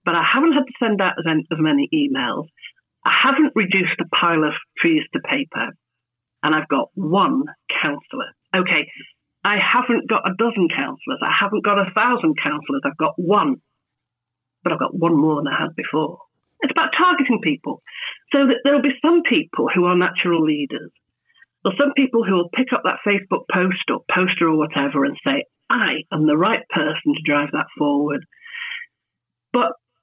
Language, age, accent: English, 40-59, British